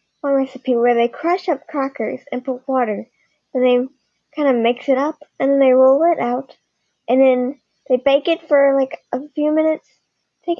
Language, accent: English, American